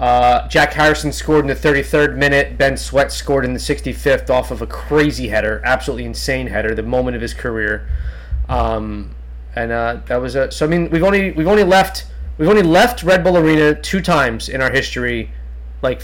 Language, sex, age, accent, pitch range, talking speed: English, male, 20-39, American, 120-155 Hz, 200 wpm